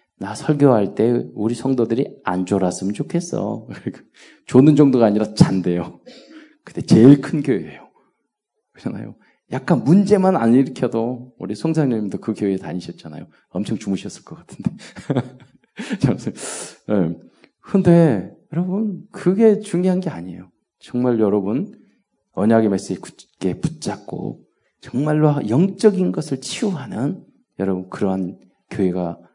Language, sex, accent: Korean, male, native